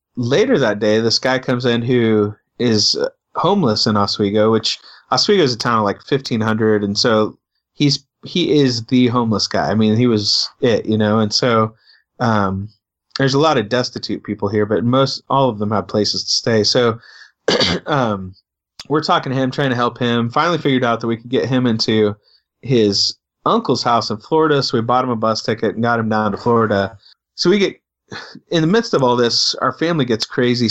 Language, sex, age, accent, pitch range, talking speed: English, male, 30-49, American, 110-130 Hz, 205 wpm